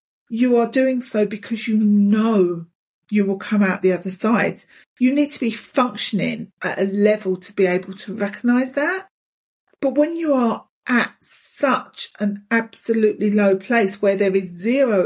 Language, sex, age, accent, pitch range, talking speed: English, female, 40-59, British, 205-290 Hz, 165 wpm